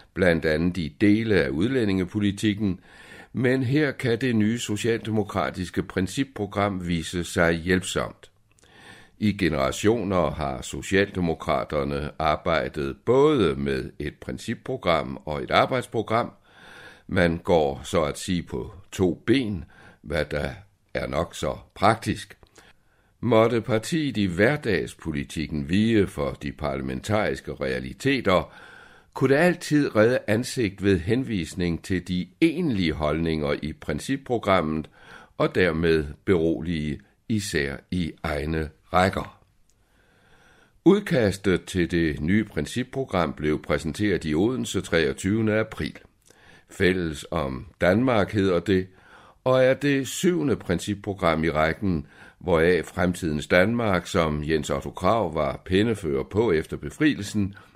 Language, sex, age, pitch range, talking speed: Danish, male, 60-79, 80-110 Hz, 110 wpm